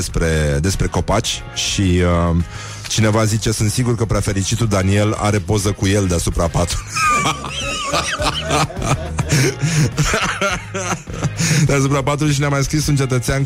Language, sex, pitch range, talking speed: Romanian, male, 85-115 Hz, 115 wpm